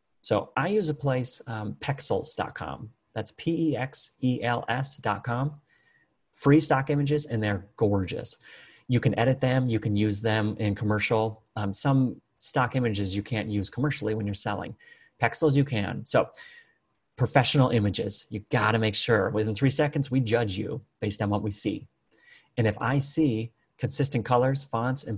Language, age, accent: English, 30-49, American